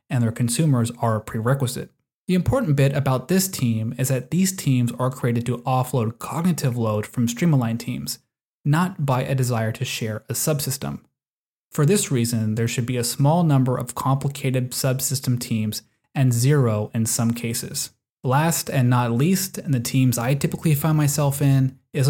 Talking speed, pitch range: 175 wpm, 120-145 Hz